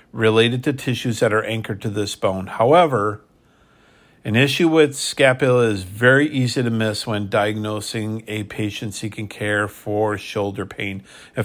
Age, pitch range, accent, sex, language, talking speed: 50-69, 105-125 Hz, American, male, English, 150 wpm